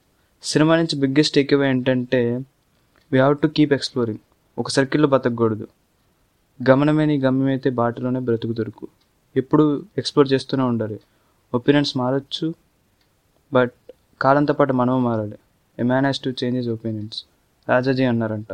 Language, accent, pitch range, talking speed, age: Telugu, native, 120-140 Hz, 115 wpm, 20-39